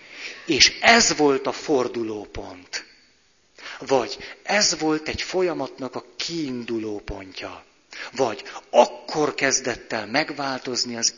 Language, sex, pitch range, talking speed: Hungarian, male, 120-155 Hz, 95 wpm